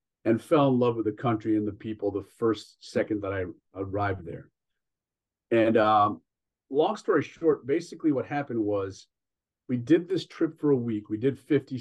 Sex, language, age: male, English, 40-59